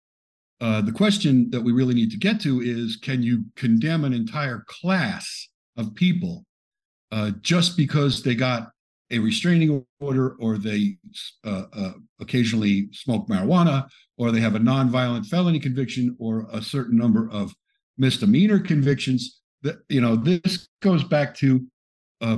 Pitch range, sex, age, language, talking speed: 115-155 Hz, male, 50-69, English, 150 wpm